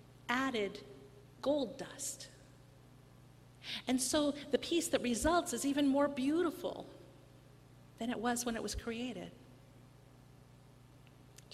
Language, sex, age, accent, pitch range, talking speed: English, female, 50-69, American, 200-255 Hz, 110 wpm